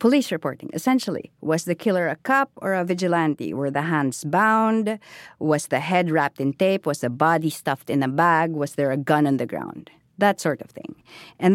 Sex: female